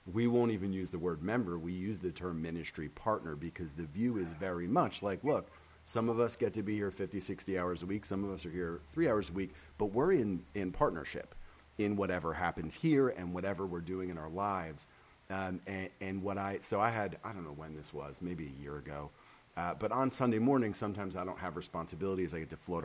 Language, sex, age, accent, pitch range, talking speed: English, male, 40-59, American, 90-105 Hz, 235 wpm